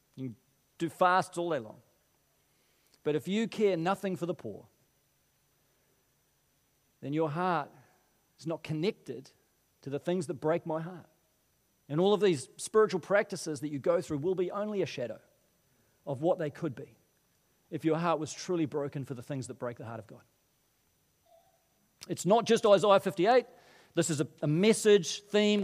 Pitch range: 150-205 Hz